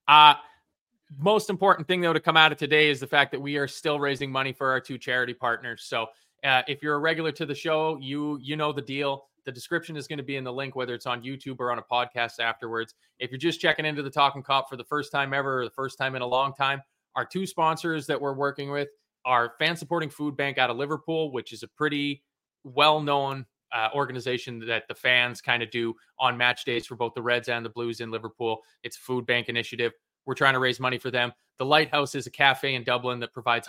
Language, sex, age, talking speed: English, male, 20-39, 245 wpm